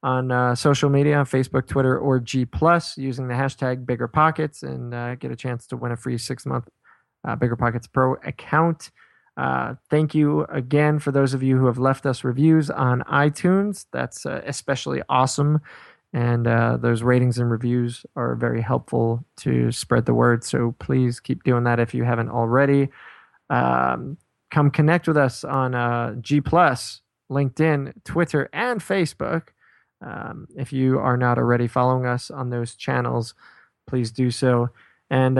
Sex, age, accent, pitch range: male, 20-39, American, 120-140 Hz